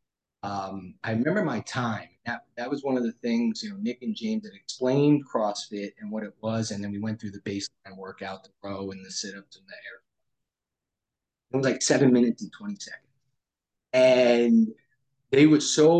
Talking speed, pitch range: 195 wpm, 110-150 Hz